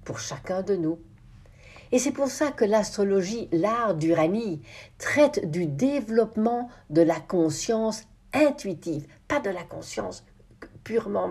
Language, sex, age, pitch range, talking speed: French, female, 60-79, 155-225 Hz, 125 wpm